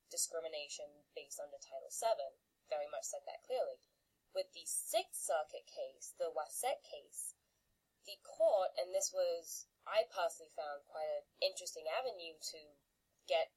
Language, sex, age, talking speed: English, female, 10-29, 140 wpm